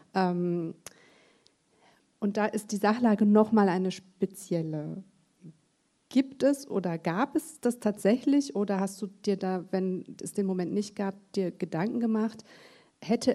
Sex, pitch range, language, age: female, 185-210 Hz, German, 40-59